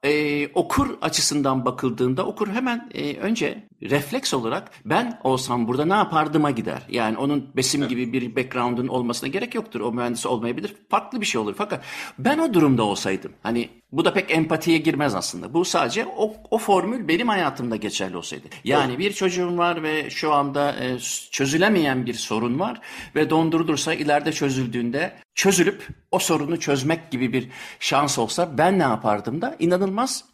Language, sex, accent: Turkish, male, native